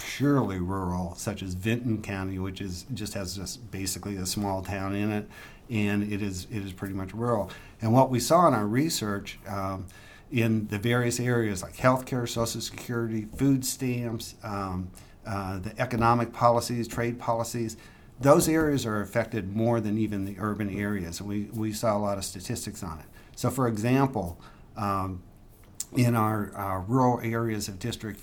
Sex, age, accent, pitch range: male, 50-69, American, 100-120 Hz